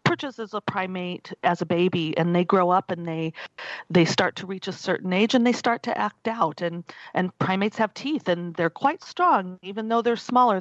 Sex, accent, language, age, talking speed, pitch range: female, American, English, 40-59, 215 wpm, 170-205 Hz